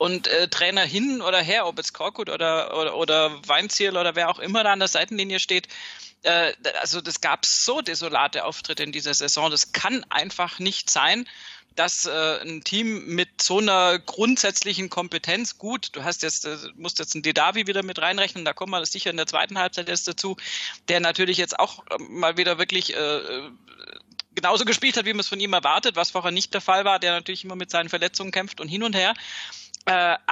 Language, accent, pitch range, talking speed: German, German, 170-205 Hz, 205 wpm